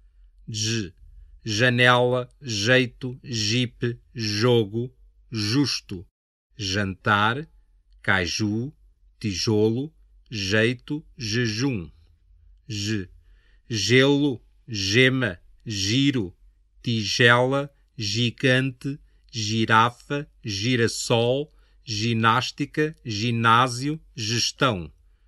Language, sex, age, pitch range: Chinese, male, 50-69, 85-130 Hz